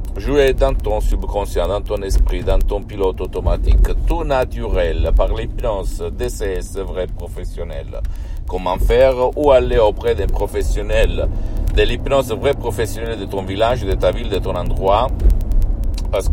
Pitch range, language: 80-110 Hz, Italian